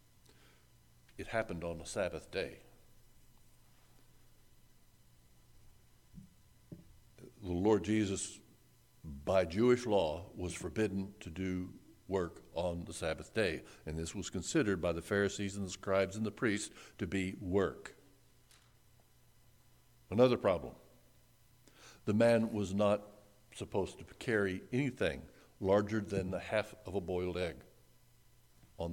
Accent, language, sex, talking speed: American, English, male, 115 wpm